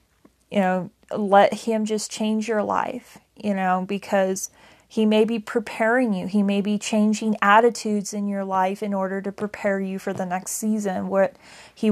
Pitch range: 195-220 Hz